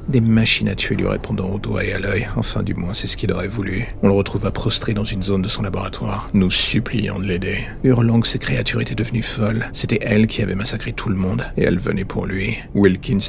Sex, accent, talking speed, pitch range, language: male, French, 245 wpm, 100-115 Hz, French